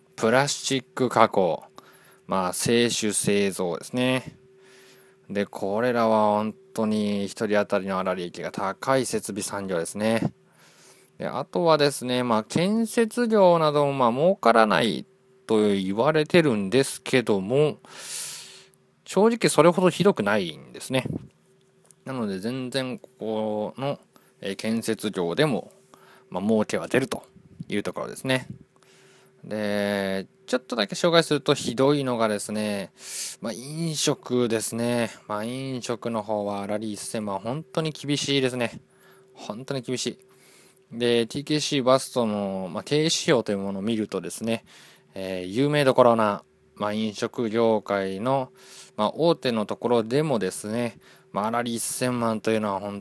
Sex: male